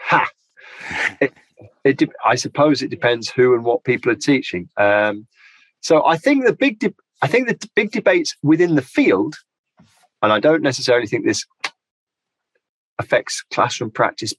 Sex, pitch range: male, 100-155 Hz